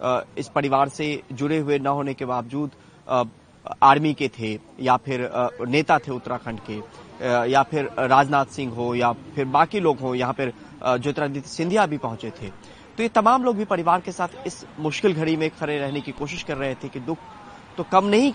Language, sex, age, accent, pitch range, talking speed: Hindi, male, 20-39, native, 130-175 Hz, 195 wpm